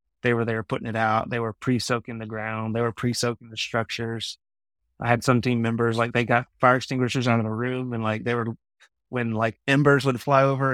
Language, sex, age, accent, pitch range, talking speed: English, male, 30-49, American, 110-130 Hz, 225 wpm